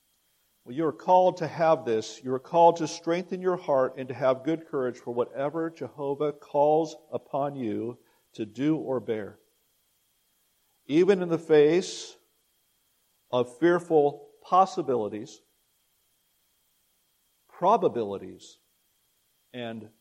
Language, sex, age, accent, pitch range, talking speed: English, male, 50-69, American, 115-150 Hz, 115 wpm